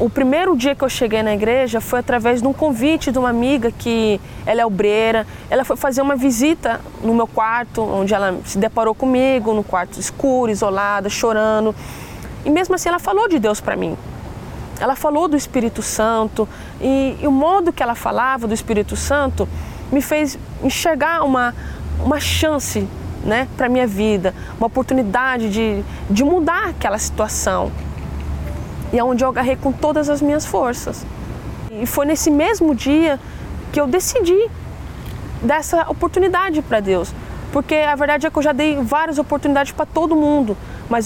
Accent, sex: Brazilian, female